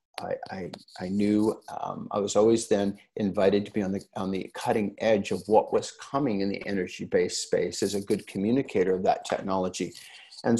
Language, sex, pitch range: English, male, 95-125 Hz